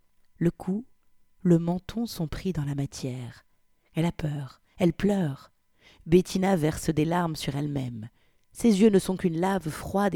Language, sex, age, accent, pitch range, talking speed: French, female, 50-69, French, 150-205 Hz, 160 wpm